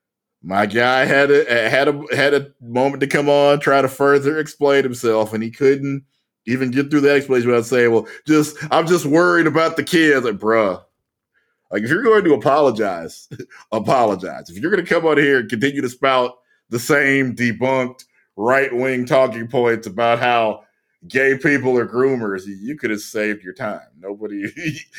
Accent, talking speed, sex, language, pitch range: American, 175 wpm, male, English, 120-145 Hz